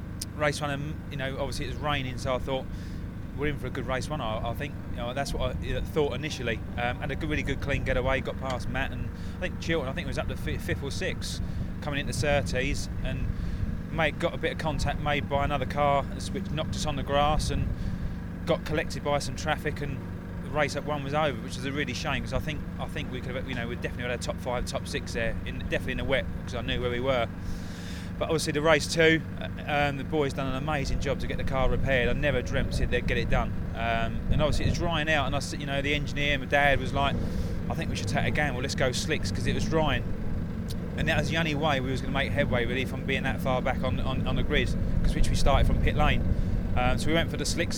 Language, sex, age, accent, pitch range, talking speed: English, male, 20-39, British, 90-140 Hz, 275 wpm